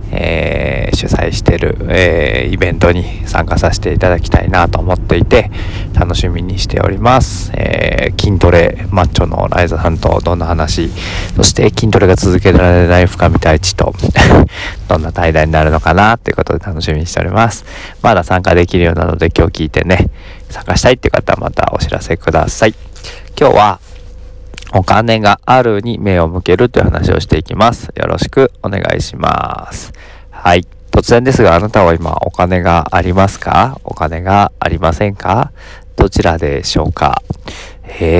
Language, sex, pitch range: Japanese, male, 85-100 Hz